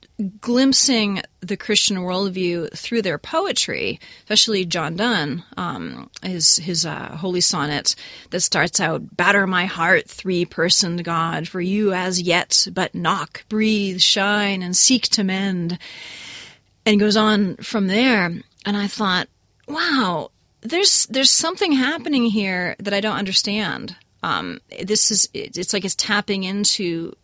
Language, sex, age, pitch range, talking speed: English, female, 30-49, 175-210 Hz, 140 wpm